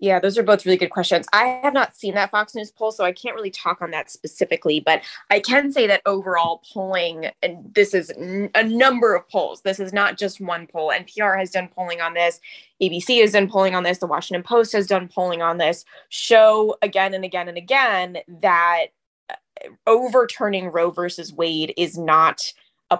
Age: 20-39